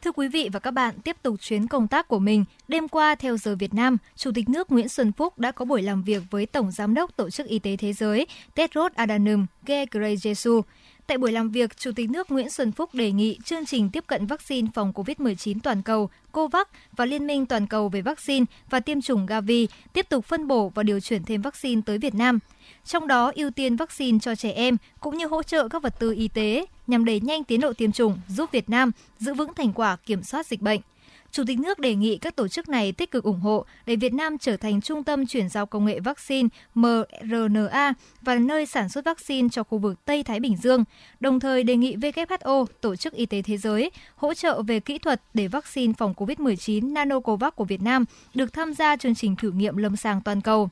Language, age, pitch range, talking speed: Vietnamese, 20-39, 215-285 Hz, 230 wpm